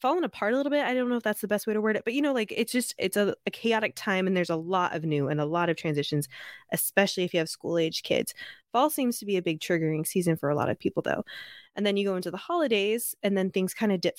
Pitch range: 170-220 Hz